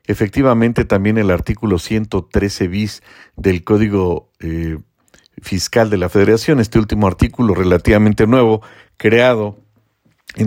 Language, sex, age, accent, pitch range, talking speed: Spanish, male, 50-69, Mexican, 100-115 Hz, 115 wpm